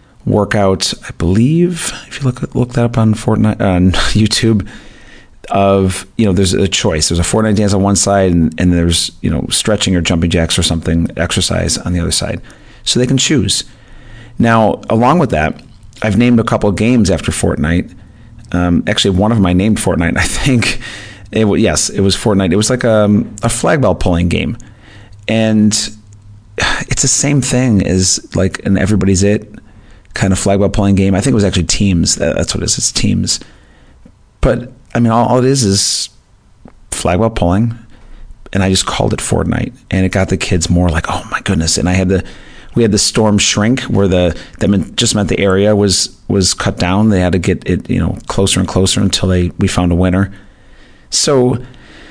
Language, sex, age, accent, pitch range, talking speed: English, male, 30-49, American, 95-115 Hz, 200 wpm